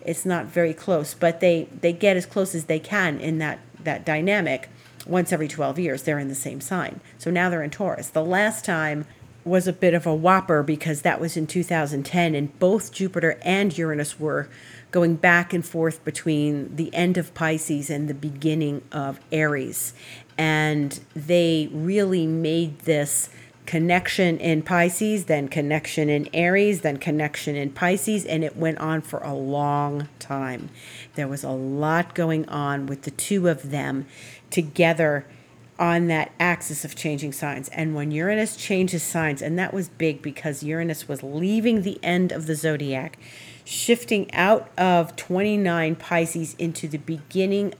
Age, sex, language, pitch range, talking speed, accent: 40-59, female, English, 145-175 Hz, 165 wpm, American